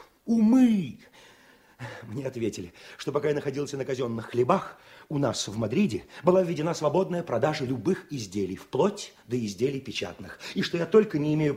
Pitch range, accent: 130-205 Hz, native